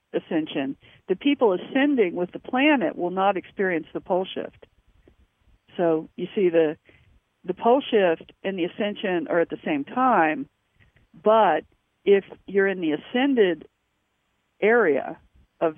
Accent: American